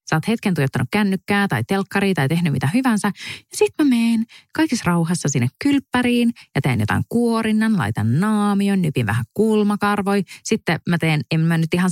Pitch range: 140-195 Hz